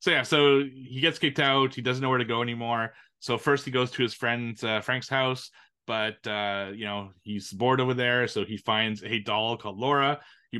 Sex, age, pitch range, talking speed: male, 20-39, 100-120 Hz, 225 wpm